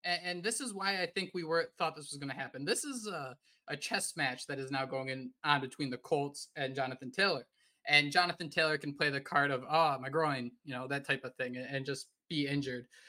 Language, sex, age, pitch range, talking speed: English, male, 20-39, 140-200 Hz, 250 wpm